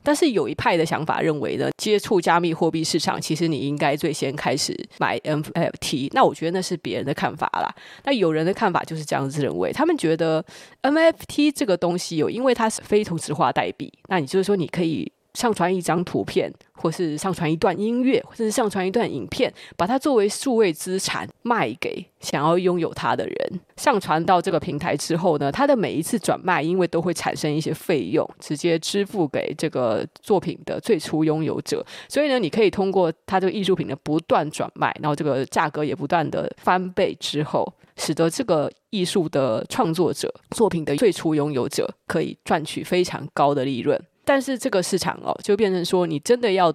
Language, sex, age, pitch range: Chinese, female, 20-39, 155-200 Hz